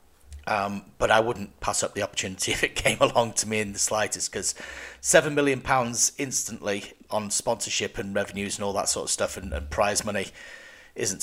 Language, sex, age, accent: English, male, 40-59, British